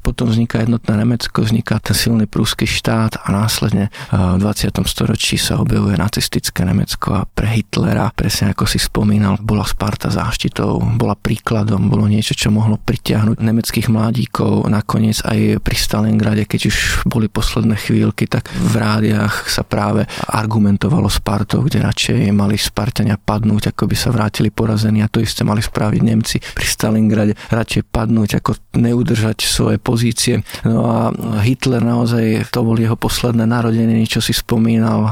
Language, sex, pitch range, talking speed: Slovak, male, 105-115 Hz, 155 wpm